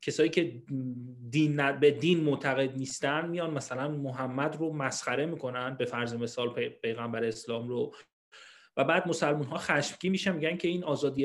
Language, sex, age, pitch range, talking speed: Persian, male, 30-49, 140-180 Hz, 165 wpm